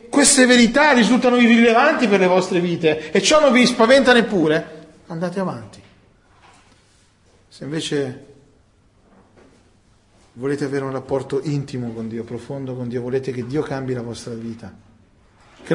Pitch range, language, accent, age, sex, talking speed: 120-195 Hz, Italian, native, 40-59, male, 135 wpm